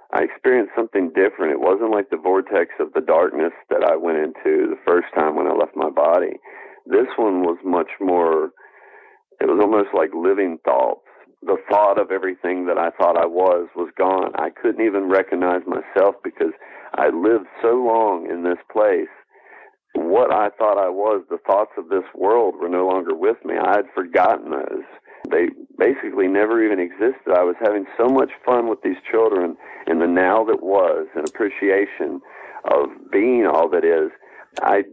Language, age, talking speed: English, 50-69, 180 wpm